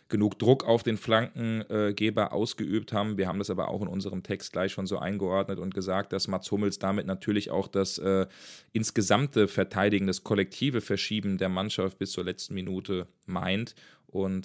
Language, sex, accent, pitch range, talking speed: German, male, German, 95-105 Hz, 175 wpm